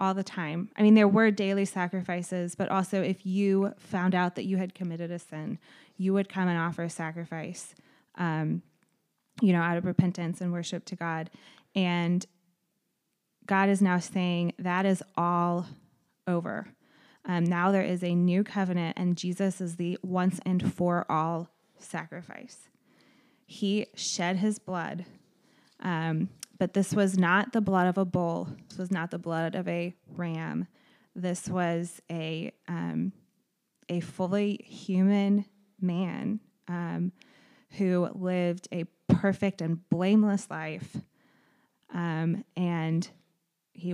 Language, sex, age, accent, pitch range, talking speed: English, female, 20-39, American, 170-195 Hz, 140 wpm